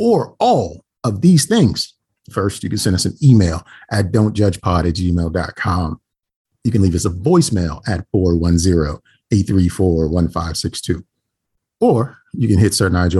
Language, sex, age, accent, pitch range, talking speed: English, male, 40-59, American, 90-115 Hz, 135 wpm